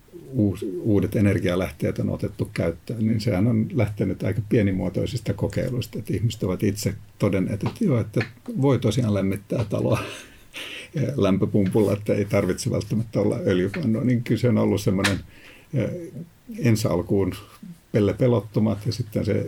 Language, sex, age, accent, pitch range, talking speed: Finnish, male, 60-79, native, 100-120 Hz, 130 wpm